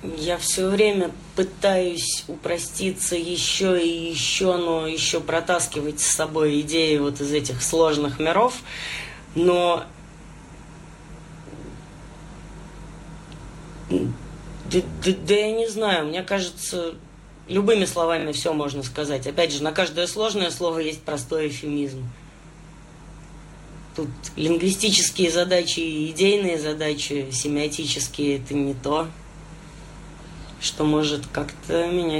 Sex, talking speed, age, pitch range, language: female, 105 wpm, 30-49, 150-170 Hz, Russian